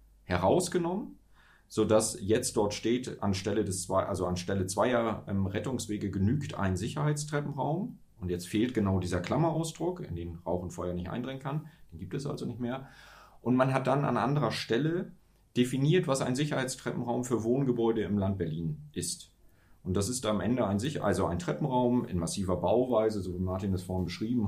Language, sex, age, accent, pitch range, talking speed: German, male, 30-49, German, 95-125 Hz, 165 wpm